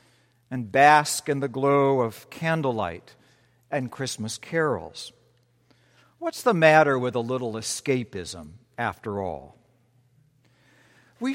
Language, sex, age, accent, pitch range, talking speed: English, male, 60-79, American, 120-145 Hz, 105 wpm